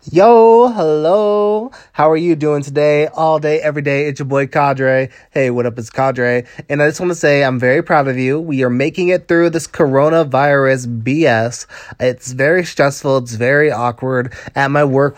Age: 20-39